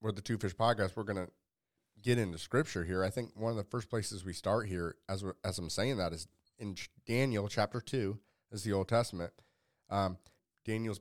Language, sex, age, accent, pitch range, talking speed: English, male, 30-49, American, 95-115 Hz, 215 wpm